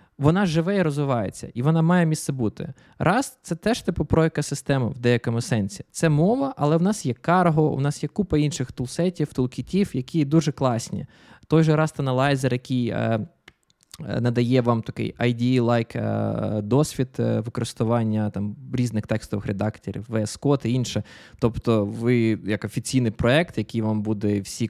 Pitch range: 115-150 Hz